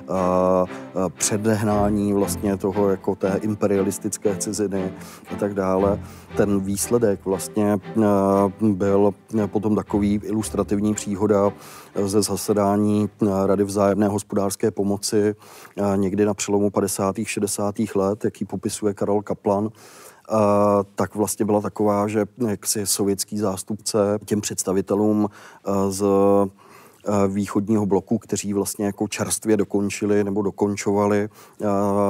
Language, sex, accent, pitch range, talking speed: Czech, male, native, 100-105 Hz, 95 wpm